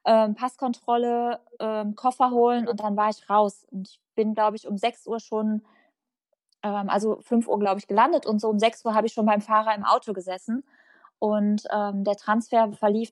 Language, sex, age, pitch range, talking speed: German, female, 20-39, 215-245 Hz, 185 wpm